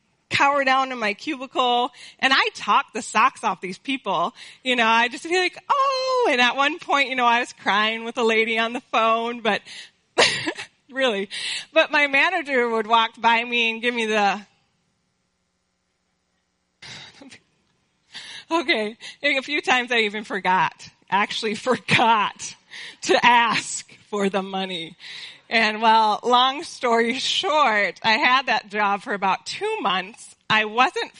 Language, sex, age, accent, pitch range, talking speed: English, female, 30-49, American, 210-275 Hz, 150 wpm